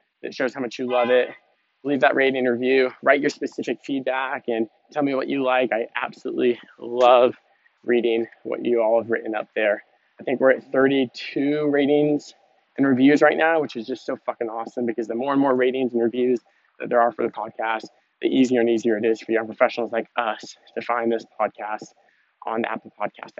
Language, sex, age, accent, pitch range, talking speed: English, male, 20-39, American, 115-130 Hz, 210 wpm